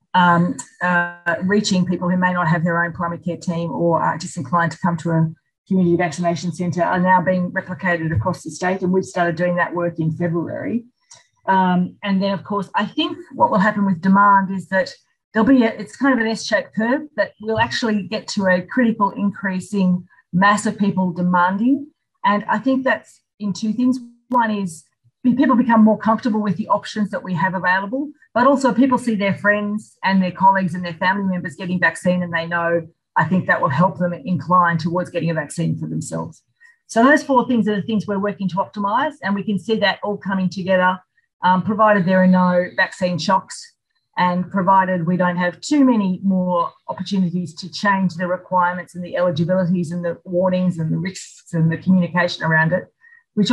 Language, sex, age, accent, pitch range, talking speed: English, female, 40-59, Australian, 175-210 Hz, 200 wpm